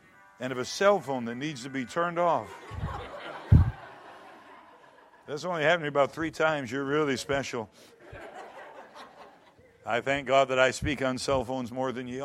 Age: 50-69